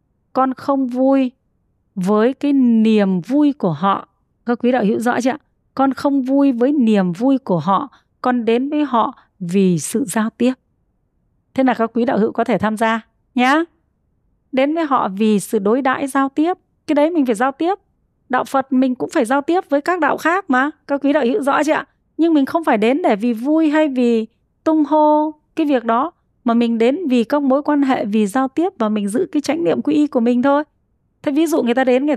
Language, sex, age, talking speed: Vietnamese, female, 20-39, 225 wpm